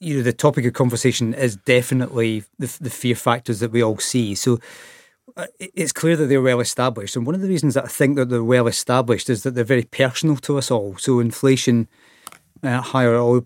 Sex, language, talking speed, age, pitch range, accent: male, English, 210 wpm, 30-49, 115-135 Hz, British